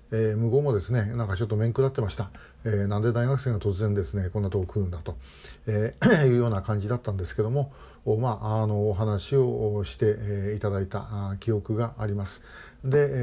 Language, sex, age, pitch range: Japanese, male, 50-69, 105-130 Hz